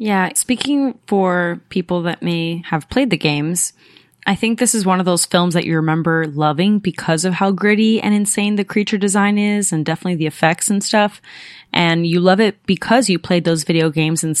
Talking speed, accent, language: 205 wpm, American, English